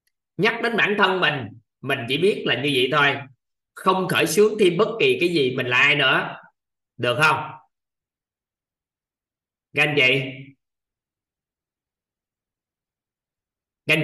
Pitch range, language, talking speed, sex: 130-185 Hz, Vietnamese, 125 wpm, male